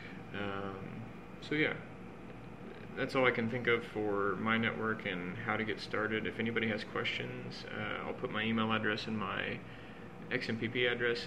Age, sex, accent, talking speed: 30-49, male, American, 165 wpm